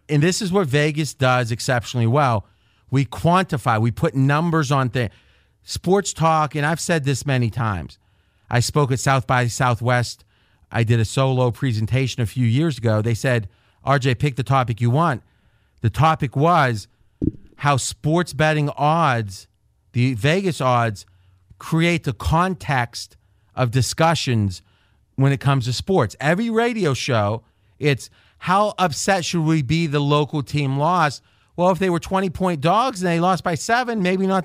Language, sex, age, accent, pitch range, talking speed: English, male, 40-59, American, 120-170 Hz, 160 wpm